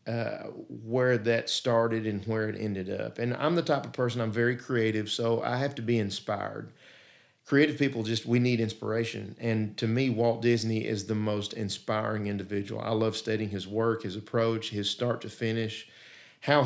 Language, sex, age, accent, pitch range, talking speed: English, male, 50-69, American, 105-120 Hz, 185 wpm